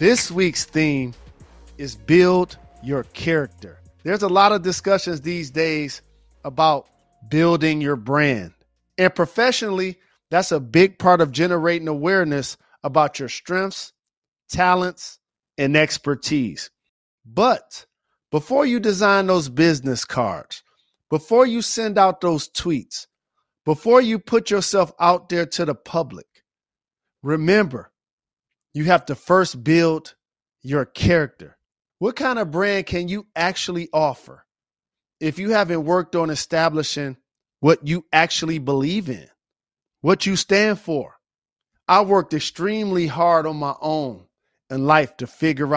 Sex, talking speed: male, 125 wpm